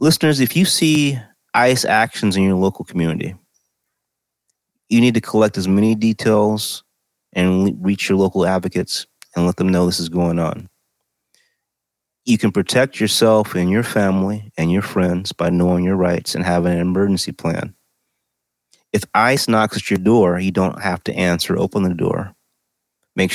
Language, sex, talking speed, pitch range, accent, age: English, male, 165 wpm, 90-110 Hz, American, 30-49